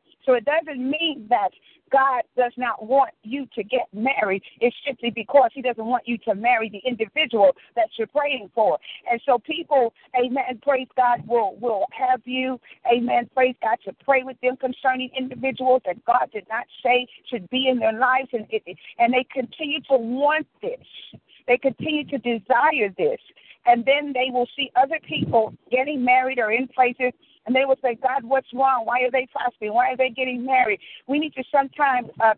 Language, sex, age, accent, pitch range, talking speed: English, female, 50-69, American, 240-275 Hz, 190 wpm